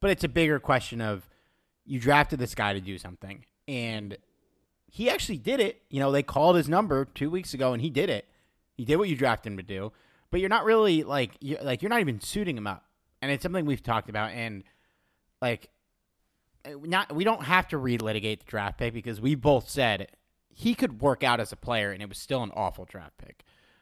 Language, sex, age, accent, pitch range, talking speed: English, male, 30-49, American, 105-145 Hz, 220 wpm